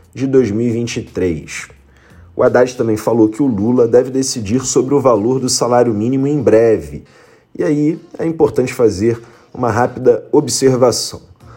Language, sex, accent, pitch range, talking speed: Portuguese, male, Brazilian, 105-135 Hz, 140 wpm